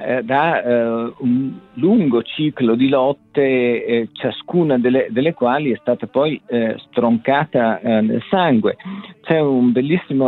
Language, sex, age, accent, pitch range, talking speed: Italian, male, 50-69, native, 115-145 Hz, 135 wpm